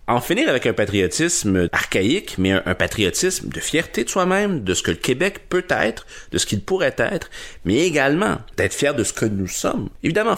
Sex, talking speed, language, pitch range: male, 200 wpm, French, 85-120 Hz